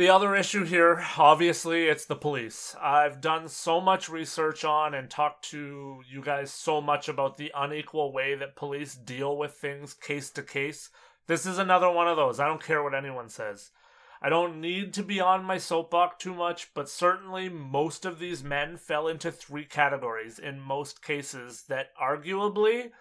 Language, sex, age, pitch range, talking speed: English, male, 30-49, 140-175 Hz, 185 wpm